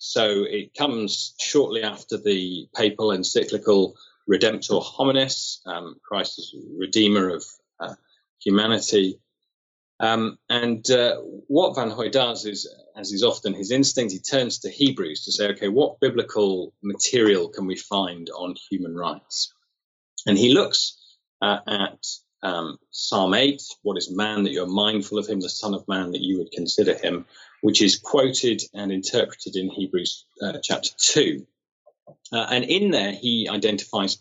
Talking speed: 150 wpm